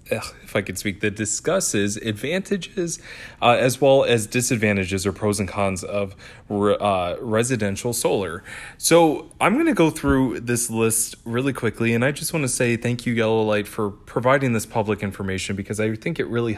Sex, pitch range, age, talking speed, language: male, 100-130 Hz, 20-39, 180 wpm, English